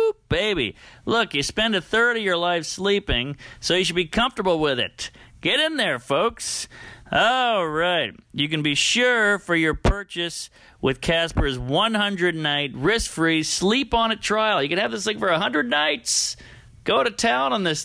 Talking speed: 175 wpm